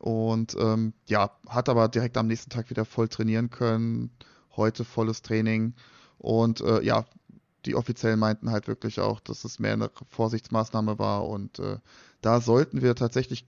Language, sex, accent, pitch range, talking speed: German, male, German, 115-135 Hz, 165 wpm